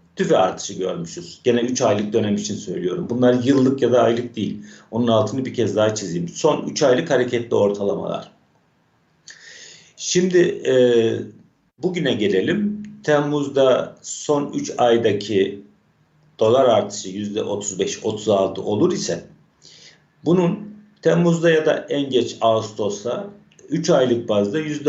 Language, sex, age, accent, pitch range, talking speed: Turkish, male, 50-69, native, 110-150 Hz, 120 wpm